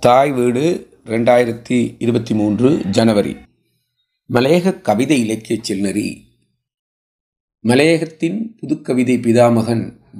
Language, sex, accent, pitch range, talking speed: Tamil, male, native, 110-135 Hz, 75 wpm